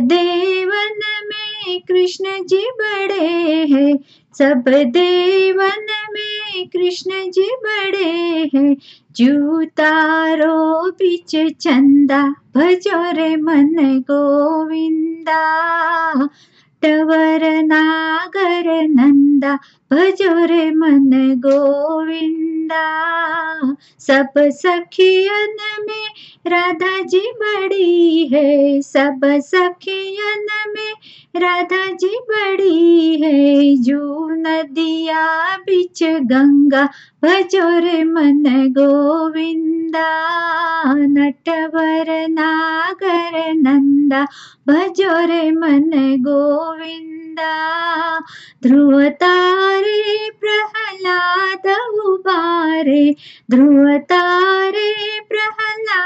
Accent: Indian